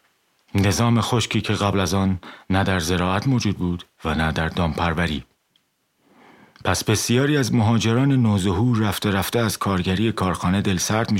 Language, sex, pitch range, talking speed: Persian, male, 90-105 Hz, 150 wpm